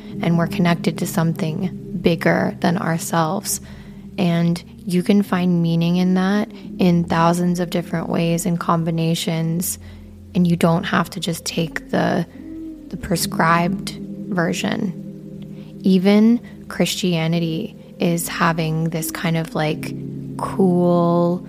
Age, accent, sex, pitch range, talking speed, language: 20-39, American, female, 170-195 Hz, 115 wpm, English